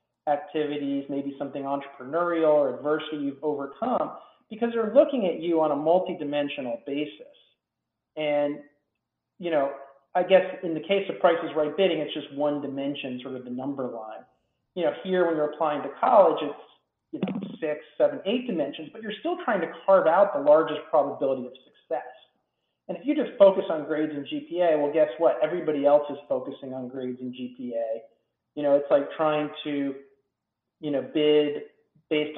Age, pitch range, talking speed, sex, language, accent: 40-59, 135-160 Hz, 180 wpm, male, English, American